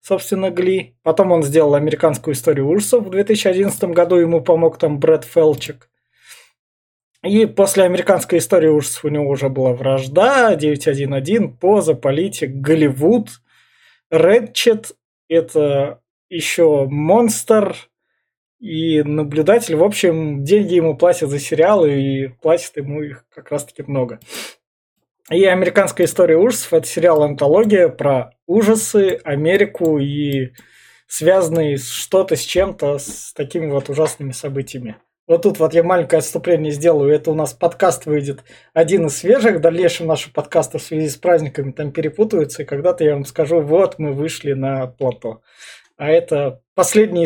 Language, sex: Russian, male